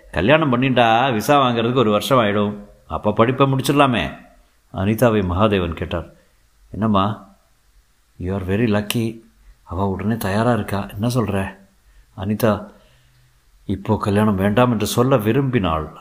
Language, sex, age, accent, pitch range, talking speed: Tamil, male, 50-69, native, 95-125 Hz, 110 wpm